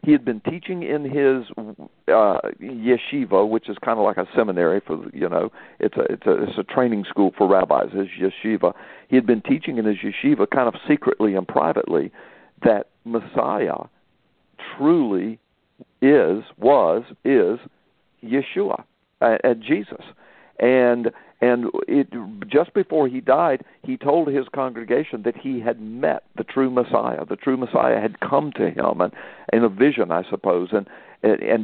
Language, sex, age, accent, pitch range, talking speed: English, male, 60-79, American, 110-135 Hz, 165 wpm